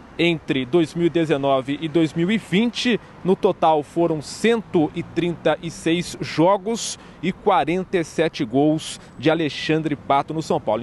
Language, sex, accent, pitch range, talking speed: Portuguese, male, Brazilian, 145-175 Hz, 100 wpm